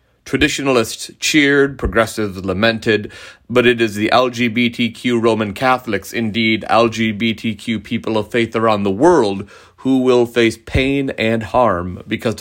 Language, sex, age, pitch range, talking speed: English, male, 30-49, 100-125 Hz, 125 wpm